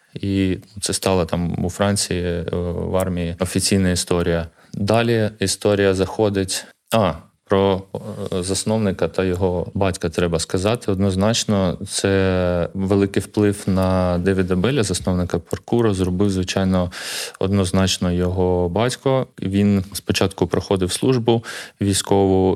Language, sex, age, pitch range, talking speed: Ukrainian, male, 20-39, 90-100 Hz, 105 wpm